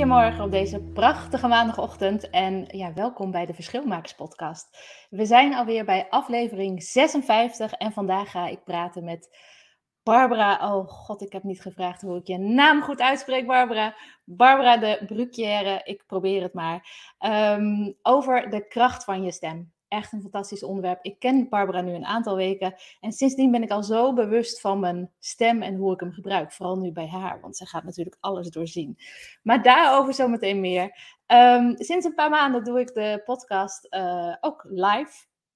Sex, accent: female, Dutch